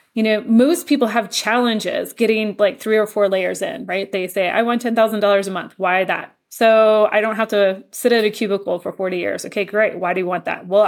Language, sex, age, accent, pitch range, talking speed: English, female, 20-39, American, 205-270 Hz, 235 wpm